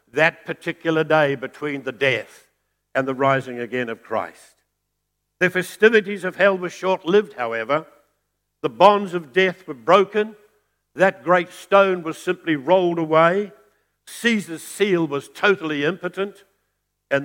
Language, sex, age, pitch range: English, male, 60-79, 135-185 Hz